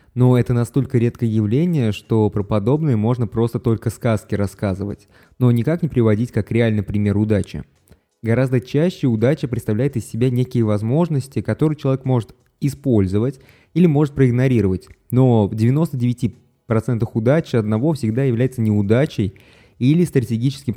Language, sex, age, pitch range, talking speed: Russian, male, 20-39, 110-130 Hz, 135 wpm